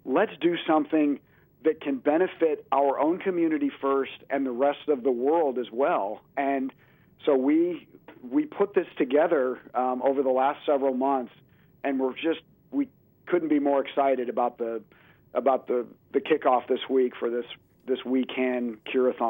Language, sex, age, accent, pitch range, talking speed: English, male, 50-69, American, 130-155 Hz, 165 wpm